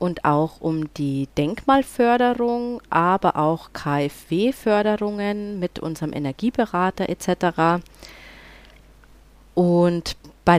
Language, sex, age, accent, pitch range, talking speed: German, female, 30-49, German, 155-225 Hz, 80 wpm